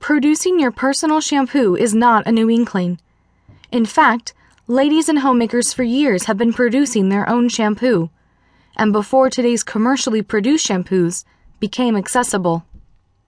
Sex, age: female, 10-29